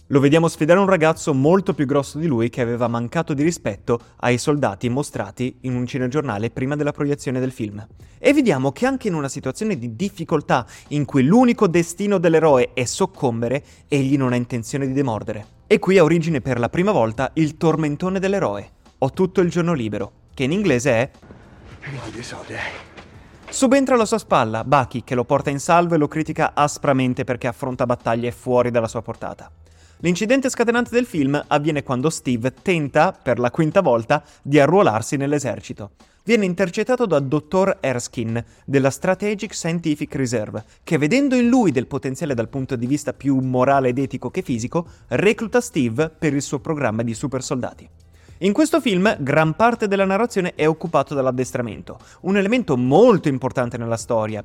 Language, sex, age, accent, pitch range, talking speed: Italian, male, 30-49, native, 125-175 Hz, 170 wpm